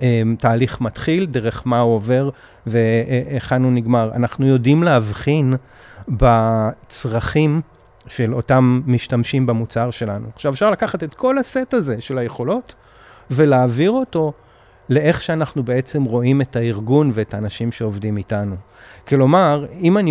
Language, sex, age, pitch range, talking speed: Hebrew, male, 40-59, 110-135 Hz, 125 wpm